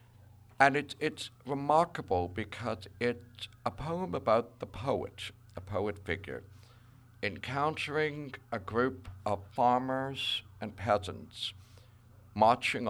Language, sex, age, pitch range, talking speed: English, male, 60-79, 100-120 Hz, 100 wpm